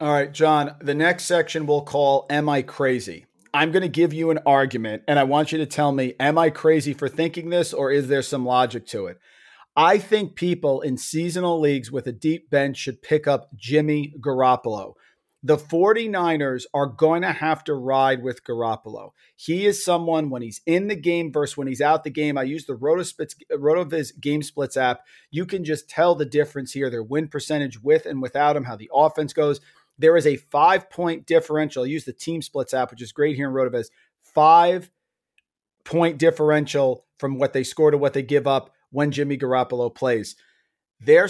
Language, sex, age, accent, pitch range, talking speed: English, male, 40-59, American, 135-165 Hz, 200 wpm